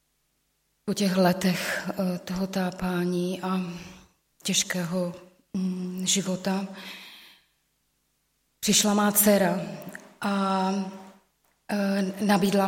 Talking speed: 60 wpm